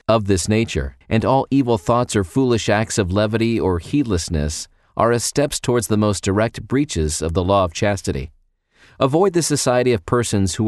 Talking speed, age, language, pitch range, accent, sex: 185 wpm, 40-59, English, 95-120 Hz, American, male